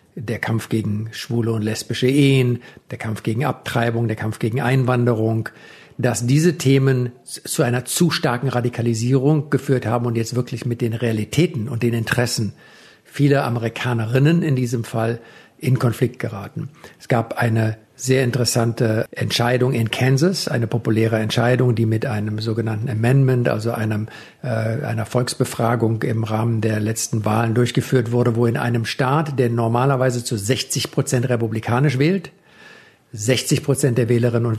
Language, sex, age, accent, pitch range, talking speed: German, male, 50-69, German, 115-135 Hz, 145 wpm